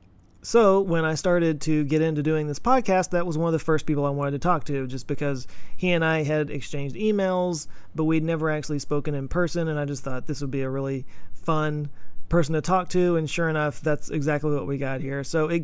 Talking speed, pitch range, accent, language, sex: 240 wpm, 145-165 Hz, American, English, male